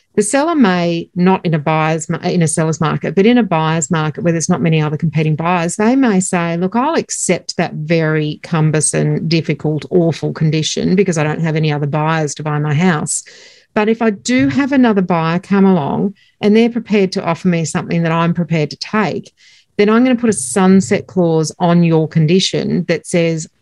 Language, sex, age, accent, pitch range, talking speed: English, female, 50-69, Australian, 160-200 Hz, 205 wpm